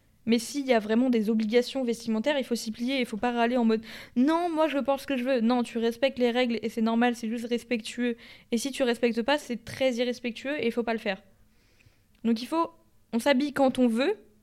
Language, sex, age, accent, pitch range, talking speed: French, female, 20-39, French, 230-275 Hz, 260 wpm